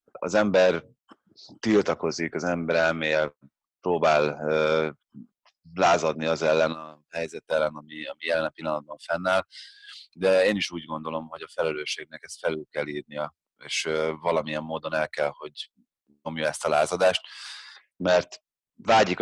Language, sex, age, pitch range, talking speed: Hungarian, male, 30-49, 80-90 Hz, 130 wpm